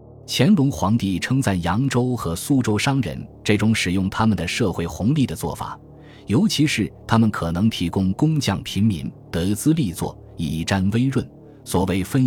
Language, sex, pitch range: Chinese, male, 90-125 Hz